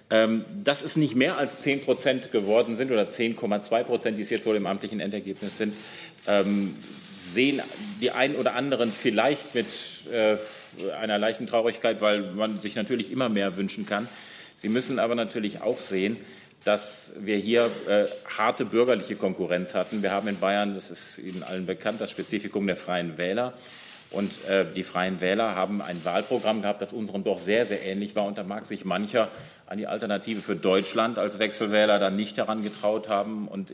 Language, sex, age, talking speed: German, male, 40-59, 175 wpm